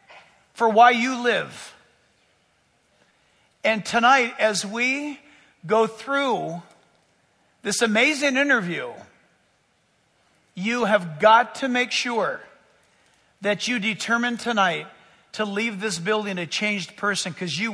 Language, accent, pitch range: English, American, 215-285 Hz